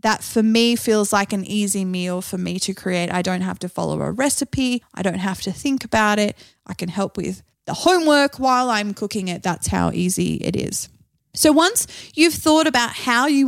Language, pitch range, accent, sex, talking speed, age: English, 190-250 Hz, Australian, female, 215 wpm, 20-39